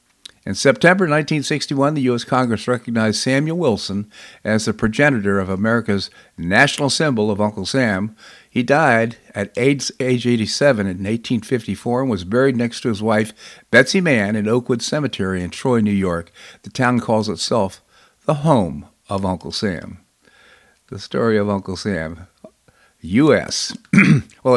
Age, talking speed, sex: 50-69, 140 wpm, male